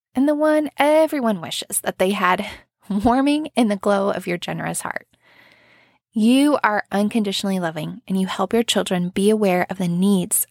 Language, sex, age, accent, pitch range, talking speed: English, female, 20-39, American, 180-235 Hz, 170 wpm